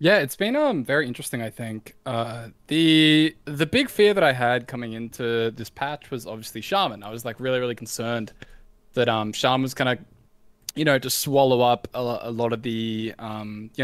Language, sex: English, male